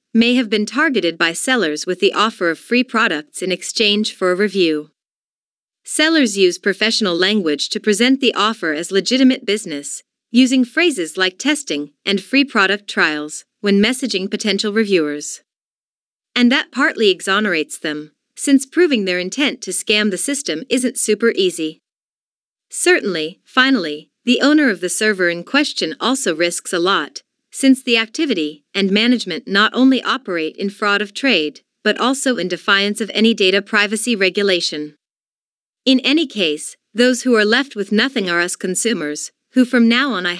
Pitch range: 180-250 Hz